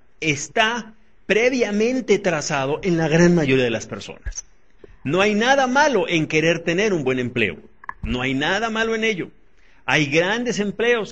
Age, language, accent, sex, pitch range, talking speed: 40-59, Spanish, Mexican, male, 145-200 Hz, 155 wpm